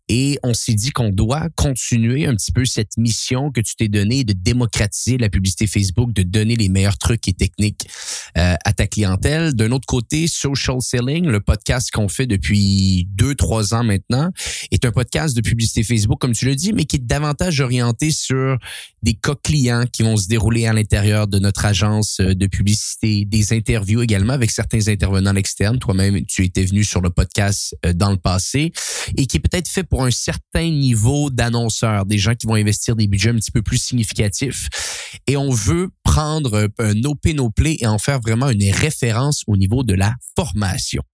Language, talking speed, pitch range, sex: French, 190 wpm, 105-130 Hz, male